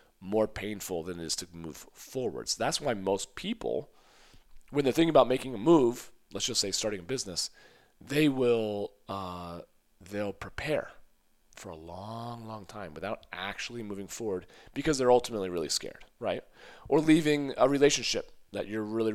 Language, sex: English, male